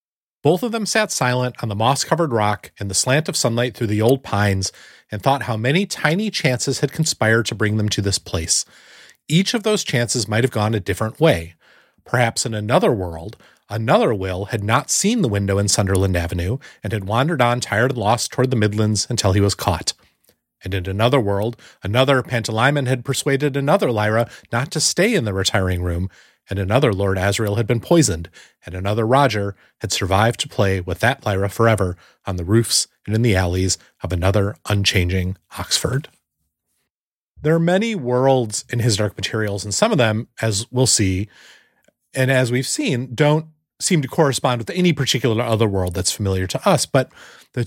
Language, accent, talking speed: English, American, 190 wpm